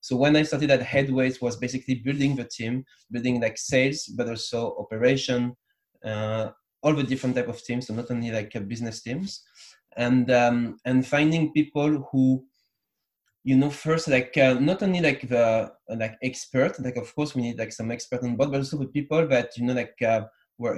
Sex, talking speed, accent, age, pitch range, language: male, 195 wpm, French, 20-39, 120-140 Hz, English